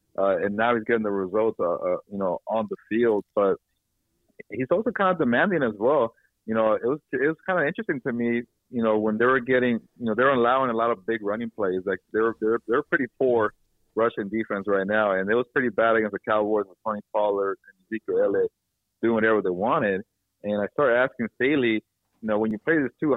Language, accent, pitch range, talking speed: English, American, 105-120 Hz, 230 wpm